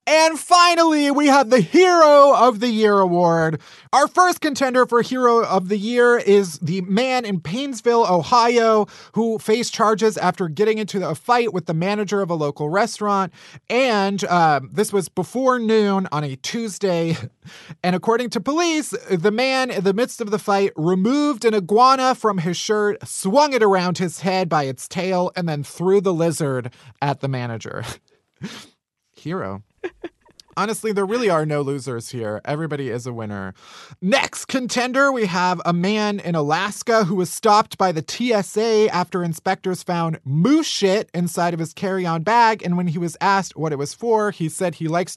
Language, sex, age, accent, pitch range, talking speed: English, male, 30-49, American, 165-230 Hz, 175 wpm